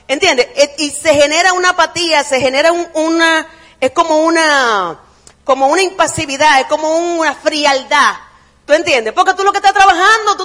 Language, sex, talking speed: Spanish, female, 160 wpm